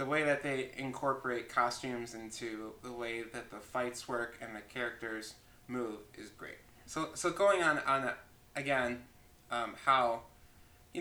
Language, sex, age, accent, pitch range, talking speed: English, male, 20-39, American, 115-130 Hz, 160 wpm